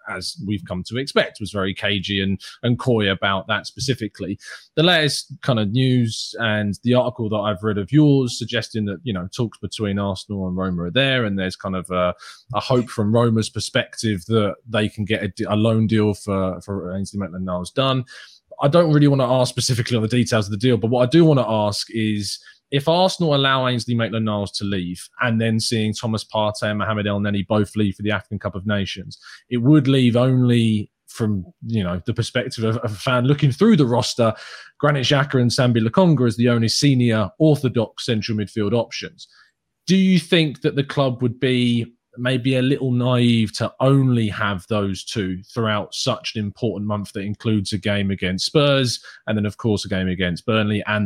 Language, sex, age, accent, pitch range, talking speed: English, male, 20-39, British, 100-125 Hz, 200 wpm